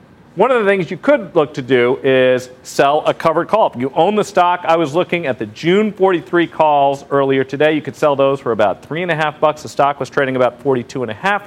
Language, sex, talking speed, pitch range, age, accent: English, male, 255 wpm, 130-180 Hz, 40-59, American